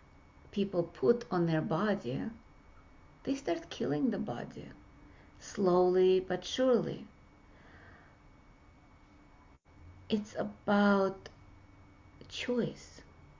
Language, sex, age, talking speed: English, female, 50-69, 70 wpm